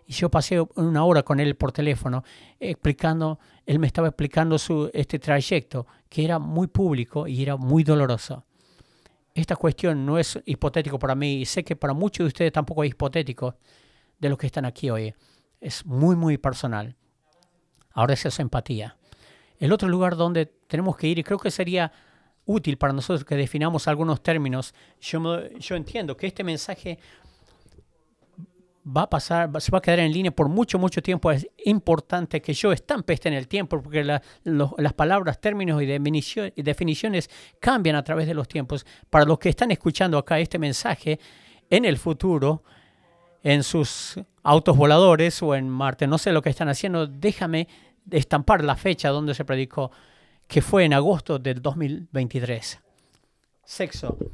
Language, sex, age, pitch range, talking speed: English, male, 40-59, 140-170 Hz, 170 wpm